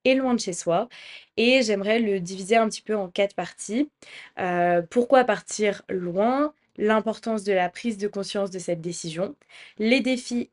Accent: French